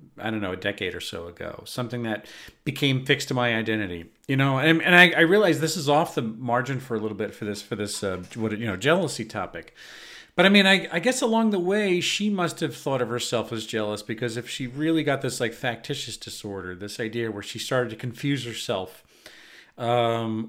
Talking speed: 225 wpm